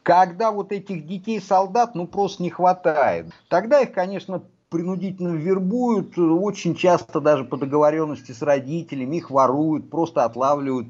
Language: Russian